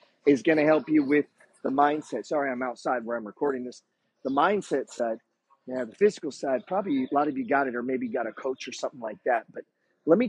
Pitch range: 125-175 Hz